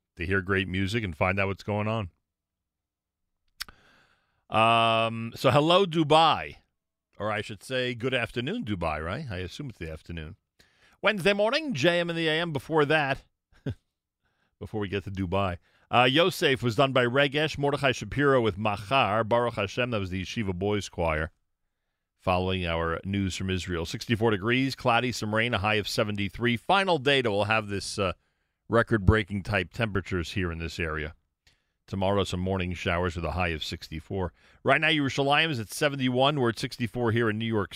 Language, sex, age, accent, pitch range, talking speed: English, male, 40-59, American, 90-115 Hz, 175 wpm